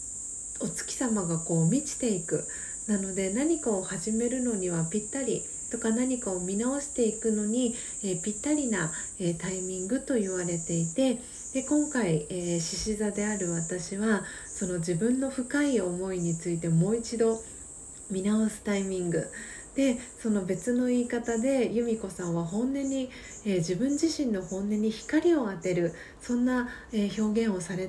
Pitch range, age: 180-235 Hz, 40-59